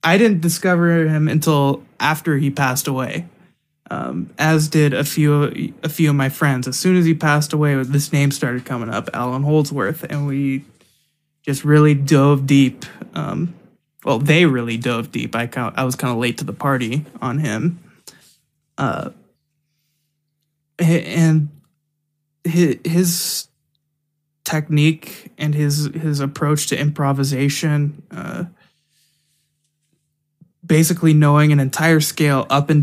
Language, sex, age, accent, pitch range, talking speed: English, male, 20-39, American, 140-160 Hz, 135 wpm